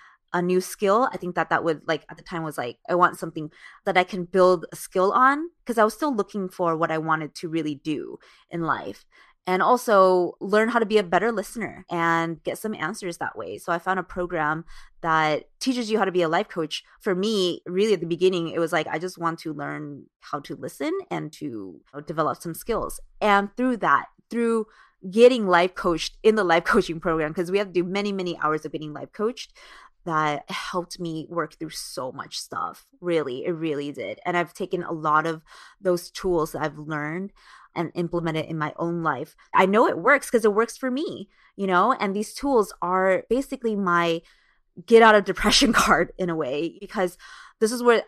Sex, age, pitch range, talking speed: female, 20-39, 165-215 Hz, 215 wpm